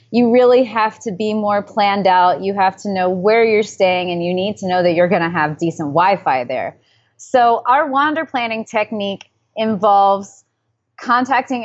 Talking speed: 180 wpm